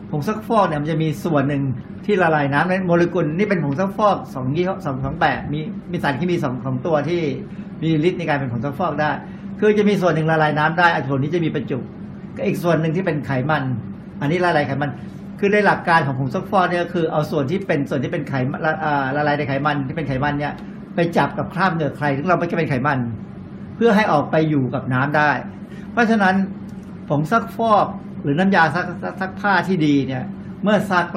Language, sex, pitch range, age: Thai, male, 145-190 Hz, 60-79